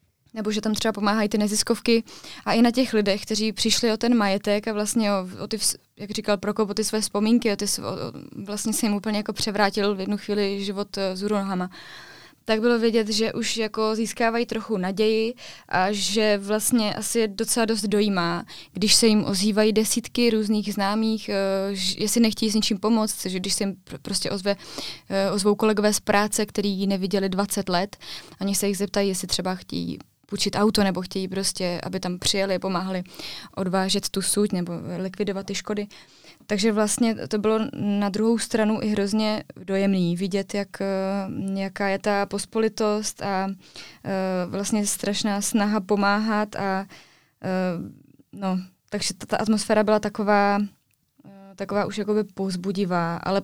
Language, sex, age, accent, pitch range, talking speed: Czech, female, 20-39, native, 195-215 Hz, 165 wpm